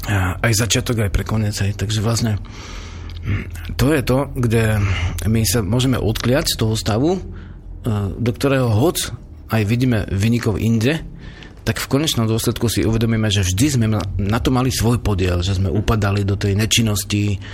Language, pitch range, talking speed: Slovak, 100-115 Hz, 155 wpm